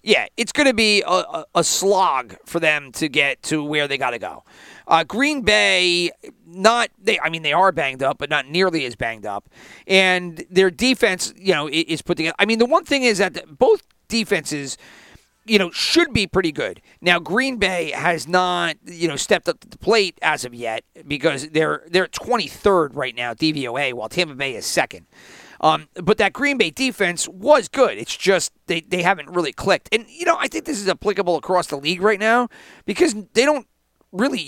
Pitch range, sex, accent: 155-215 Hz, male, American